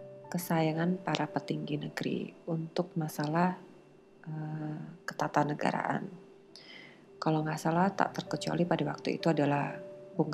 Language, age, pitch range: Indonesian, 30-49, 155-190 Hz